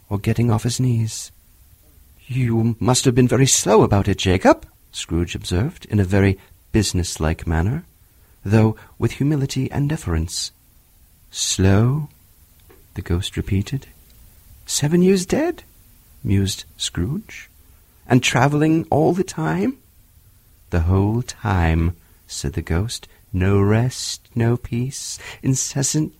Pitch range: 90-145 Hz